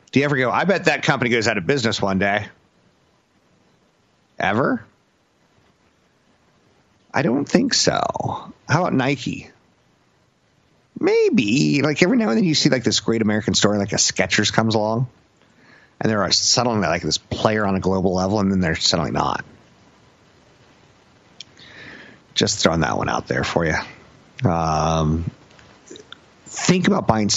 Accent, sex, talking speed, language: American, male, 145 wpm, English